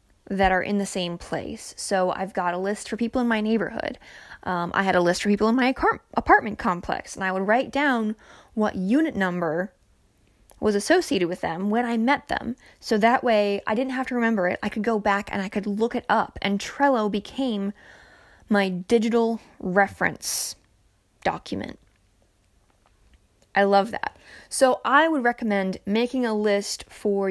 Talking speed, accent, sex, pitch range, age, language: 175 wpm, American, female, 185-235 Hz, 20-39, English